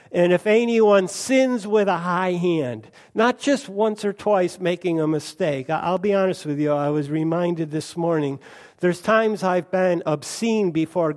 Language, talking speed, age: English, 170 wpm, 60-79